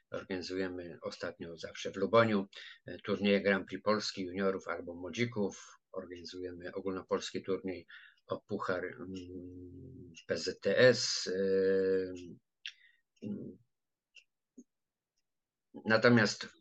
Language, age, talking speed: Polish, 50-69, 70 wpm